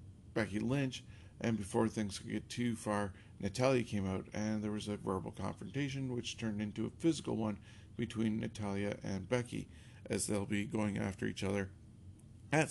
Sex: male